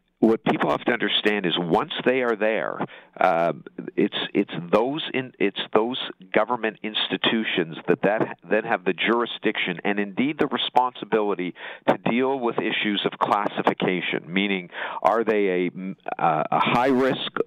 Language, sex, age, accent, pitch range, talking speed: English, male, 50-69, American, 95-125 Hz, 150 wpm